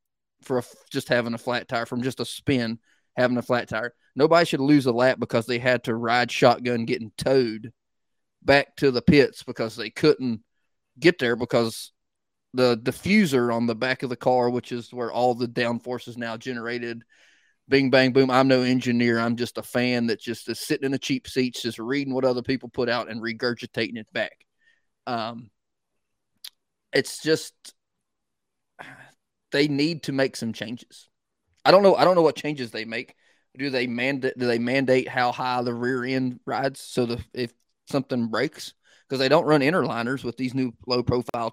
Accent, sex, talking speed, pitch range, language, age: American, male, 190 wpm, 120-135 Hz, English, 30-49